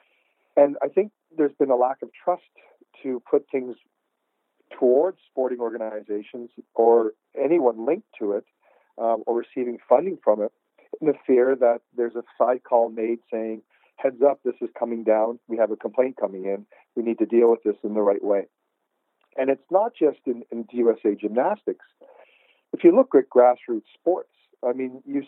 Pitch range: 115-140 Hz